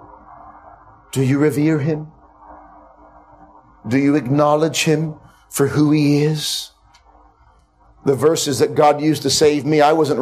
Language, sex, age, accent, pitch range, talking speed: English, male, 40-59, American, 130-155 Hz, 130 wpm